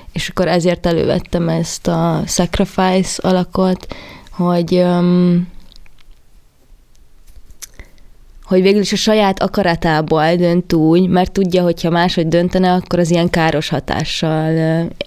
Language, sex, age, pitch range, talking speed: Hungarian, female, 20-39, 170-185 Hz, 110 wpm